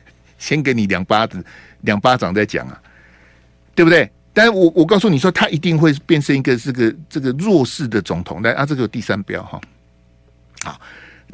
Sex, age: male, 60-79